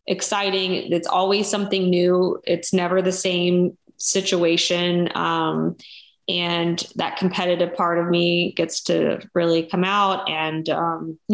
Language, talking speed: English, 125 wpm